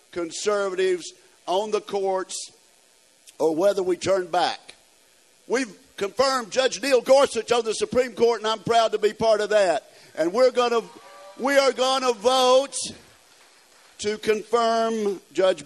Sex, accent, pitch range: male, American, 190-250 Hz